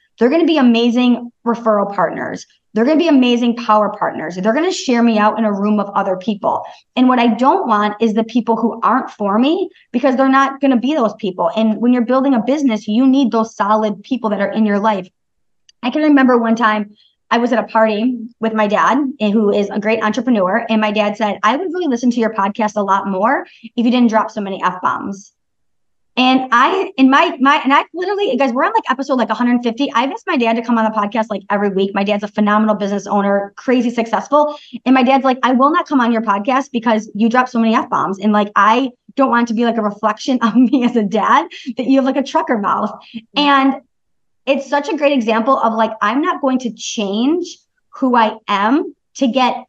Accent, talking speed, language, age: American, 235 wpm, English, 20-39